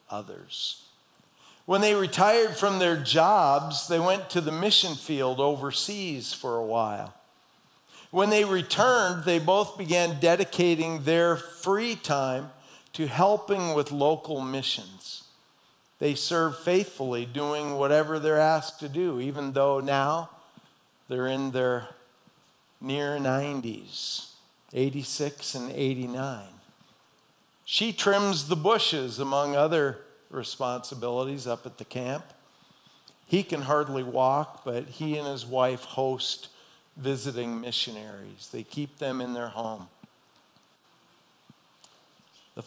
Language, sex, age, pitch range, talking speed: English, male, 50-69, 130-170 Hz, 115 wpm